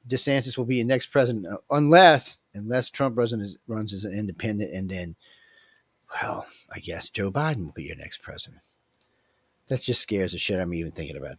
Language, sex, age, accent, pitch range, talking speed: English, male, 40-59, American, 110-135 Hz, 200 wpm